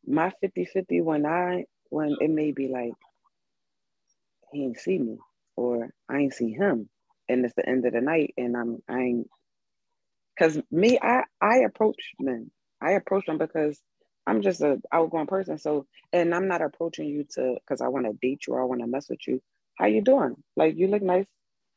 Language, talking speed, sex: English, 200 wpm, female